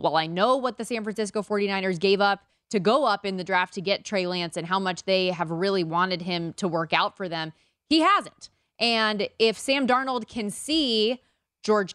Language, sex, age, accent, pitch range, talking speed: English, female, 20-39, American, 180-225 Hz, 210 wpm